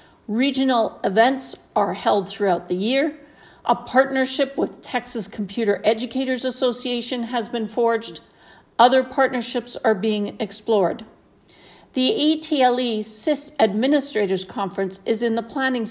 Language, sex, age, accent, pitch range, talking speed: English, female, 50-69, American, 200-255 Hz, 115 wpm